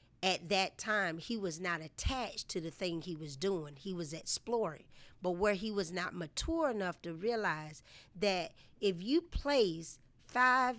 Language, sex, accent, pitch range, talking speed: English, female, American, 170-220 Hz, 165 wpm